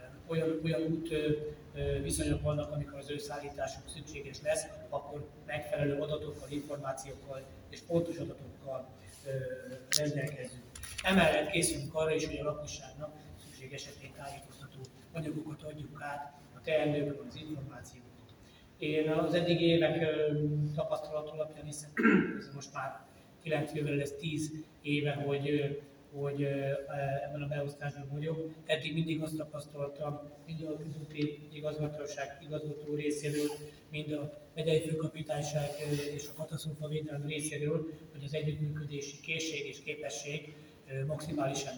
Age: 30-49